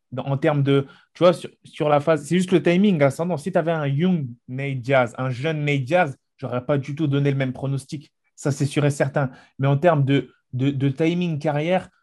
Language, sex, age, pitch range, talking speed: French, male, 20-39, 135-165 Hz, 235 wpm